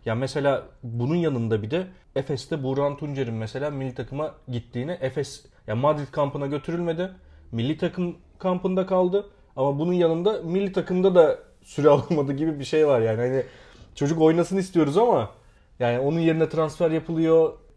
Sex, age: male, 30-49